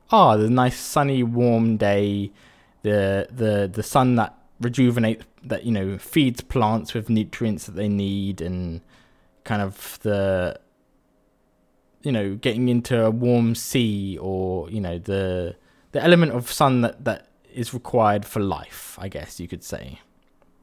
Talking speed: 150 wpm